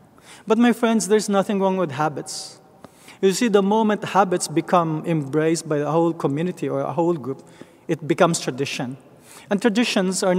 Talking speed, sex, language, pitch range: 170 wpm, male, English, 160-195 Hz